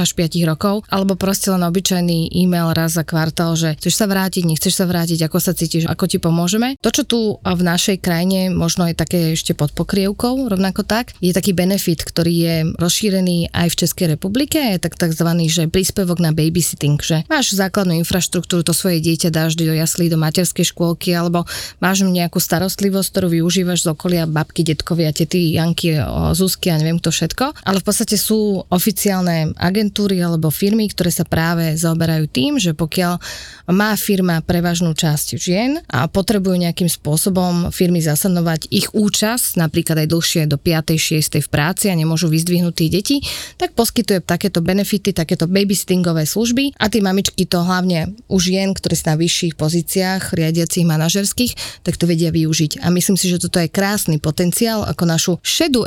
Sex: female